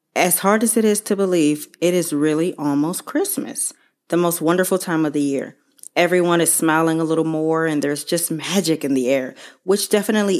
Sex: female